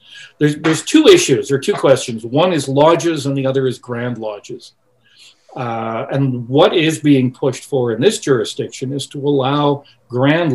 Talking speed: 170 wpm